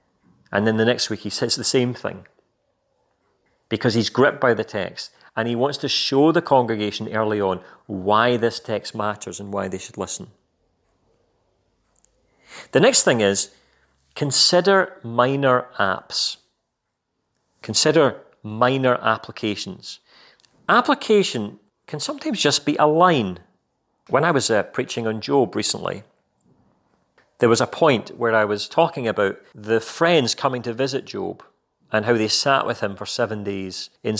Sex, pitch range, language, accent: male, 105-140 Hz, English, British